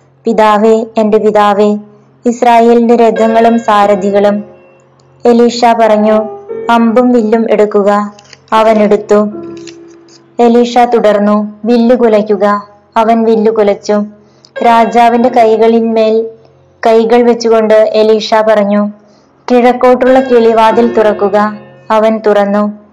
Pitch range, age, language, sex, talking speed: 210-235 Hz, 20-39, Malayalam, female, 80 wpm